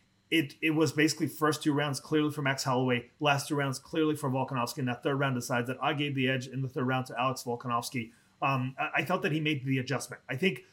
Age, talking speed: 30-49, 245 wpm